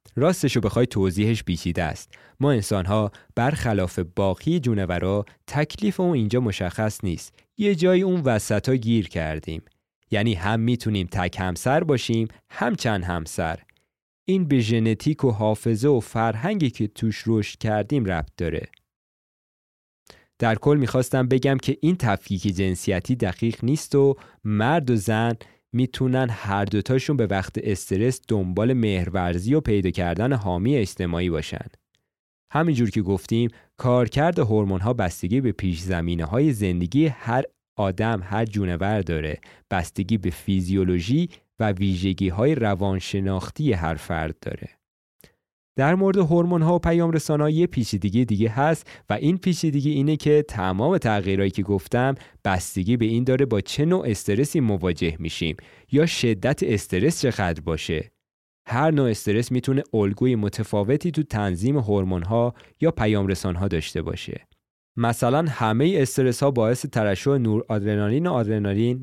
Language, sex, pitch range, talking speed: Persian, male, 100-135 Hz, 135 wpm